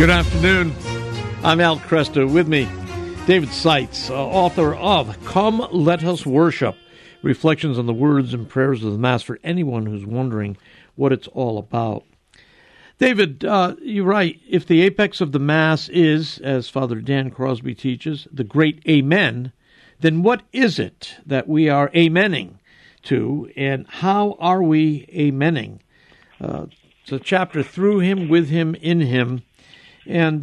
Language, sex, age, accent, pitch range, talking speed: English, male, 60-79, American, 125-170 Hz, 150 wpm